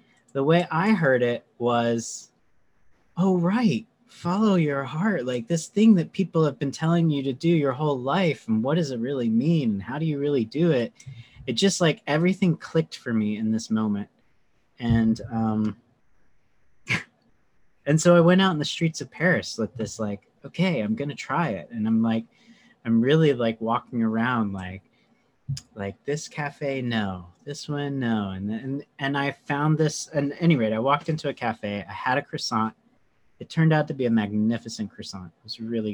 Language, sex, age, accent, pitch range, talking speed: English, male, 30-49, American, 110-155 Hz, 190 wpm